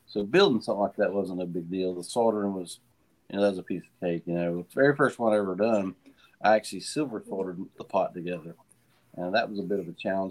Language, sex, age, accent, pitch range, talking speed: English, male, 40-59, American, 90-105 Hz, 255 wpm